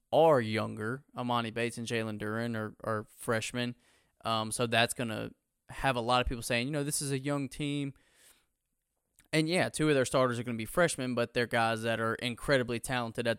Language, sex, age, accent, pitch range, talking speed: English, male, 20-39, American, 115-125 Hz, 210 wpm